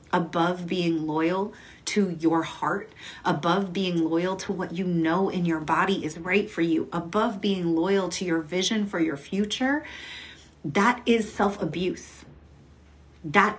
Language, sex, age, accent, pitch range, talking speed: English, female, 30-49, American, 165-210 Hz, 145 wpm